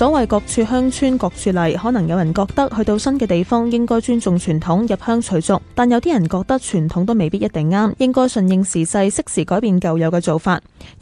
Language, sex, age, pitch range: Chinese, female, 10-29, 180-235 Hz